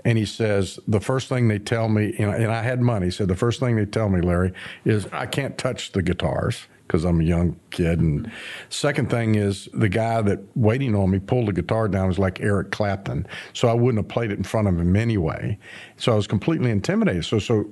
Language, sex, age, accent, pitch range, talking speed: English, male, 50-69, American, 95-125 Hz, 235 wpm